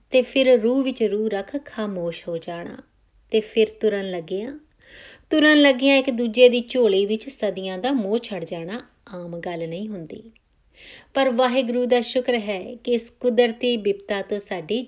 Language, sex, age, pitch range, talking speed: Punjabi, female, 30-49, 200-255 Hz, 170 wpm